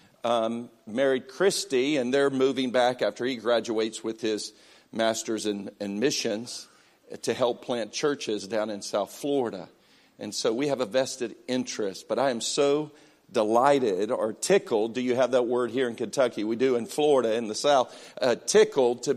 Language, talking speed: English, 180 wpm